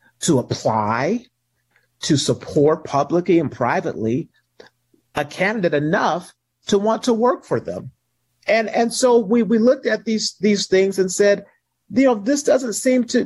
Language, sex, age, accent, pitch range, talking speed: English, male, 50-69, American, 160-230 Hz, 155 wpm